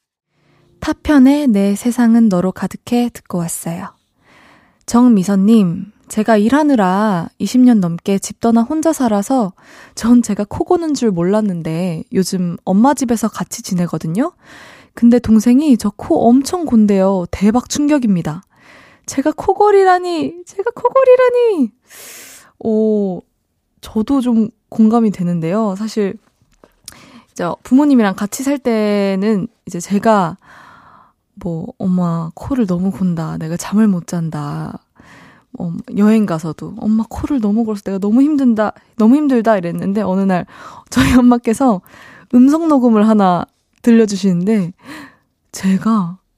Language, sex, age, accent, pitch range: Korean, female, 20-39, native, 190-255 Hz